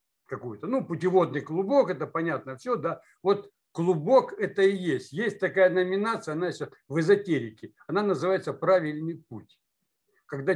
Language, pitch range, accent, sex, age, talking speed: Russian, 135-200 Hz, native, male, 60-79, 150 wpm